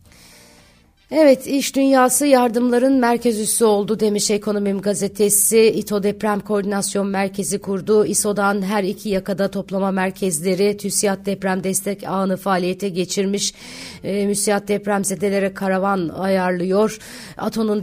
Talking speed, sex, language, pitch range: 115 wpm, female, Turkish, 190-215 Hz